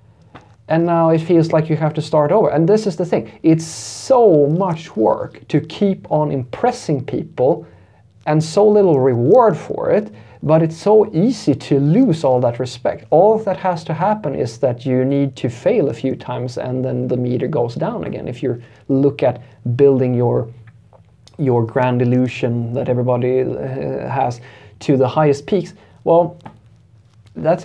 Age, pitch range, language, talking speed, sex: 30-49, 120-160 Hz, English, 170 wpm, male